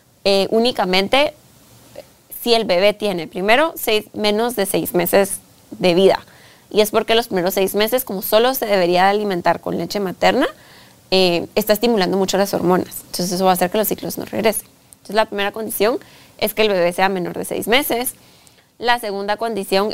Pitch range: 185-220 Hz